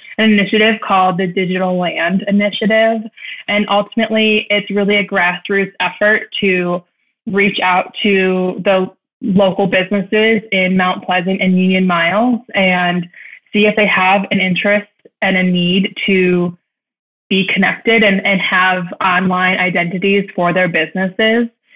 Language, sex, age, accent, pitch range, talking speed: English, female, 20-39, American, 185-215 Hz, 130 wpm